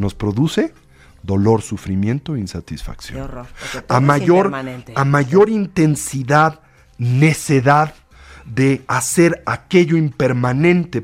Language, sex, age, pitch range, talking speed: Spanish, male, 50-69, 110-150 Hz, 75 wpm